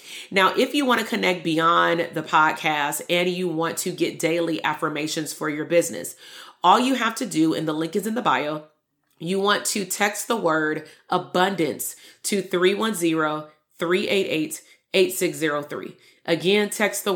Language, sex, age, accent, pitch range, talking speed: English, female, 30-49, American, 160-190 Hz, 150 wpm